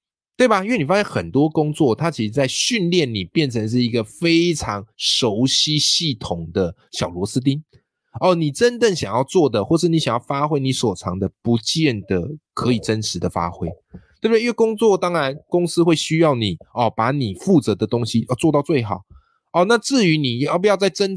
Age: 20-39